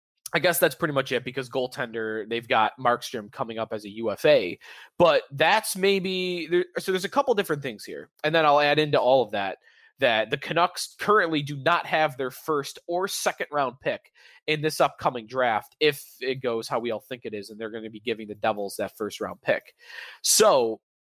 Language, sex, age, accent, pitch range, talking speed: English, male, 20-39, American, 135-180 Hz, 210 wpm